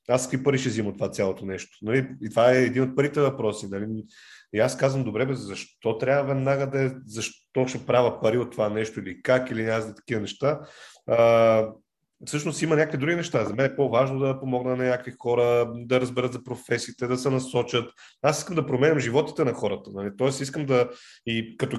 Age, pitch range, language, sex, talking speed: 30-49, 115-155 Hz, Bulgarian, male, 205 wpm